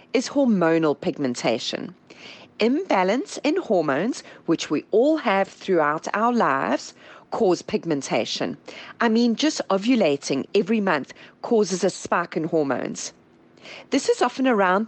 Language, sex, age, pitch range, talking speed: English, female, 40-59, 175-255 Hz, 120 wpm